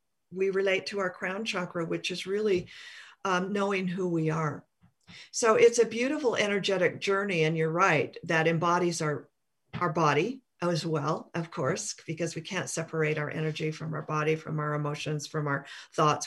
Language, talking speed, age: English, 175 wpm, 50-69